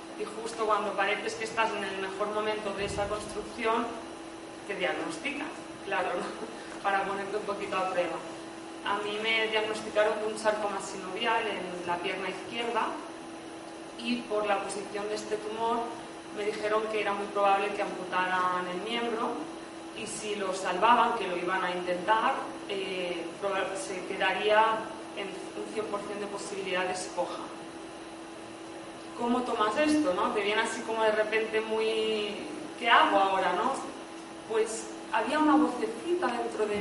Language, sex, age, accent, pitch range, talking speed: Spanish, female, 20-39, Spanish, 195-220 Hz, 150 wpm